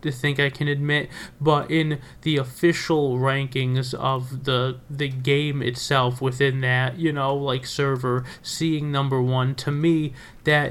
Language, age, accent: English, 20-39, American